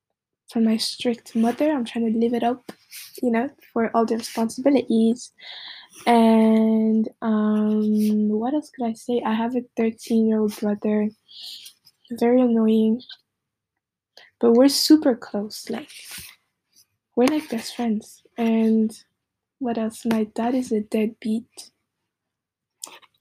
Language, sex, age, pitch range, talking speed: English, female, 10-29, 225-265 Hz, 125 wpm